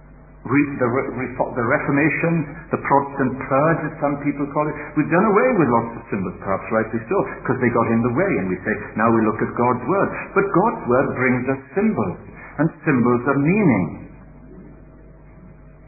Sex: male